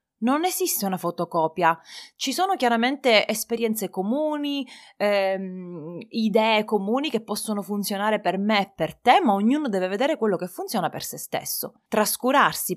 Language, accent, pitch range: Italian, native, 185-245 Hz